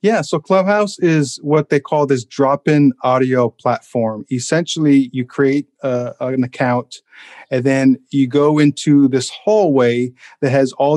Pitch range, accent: 125-145 Hz, American